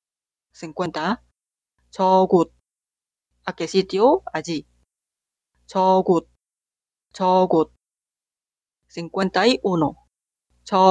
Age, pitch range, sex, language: 30-49, 160-195 Hz, female, Korean